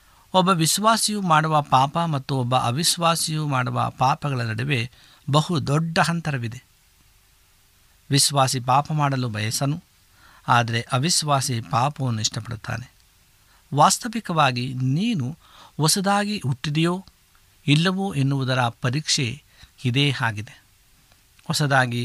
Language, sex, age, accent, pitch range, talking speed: Kannada, male, 60-79, native, 110-160 Hz, 85 wpm